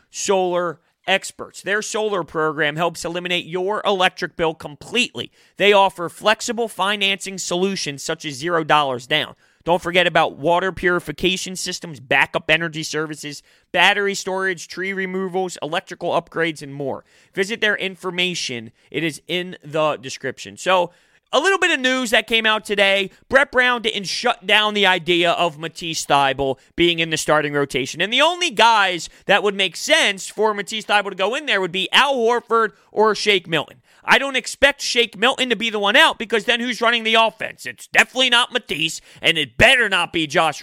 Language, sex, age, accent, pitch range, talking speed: English, male, 30-49, American, 165-215 Hz, 175 wpm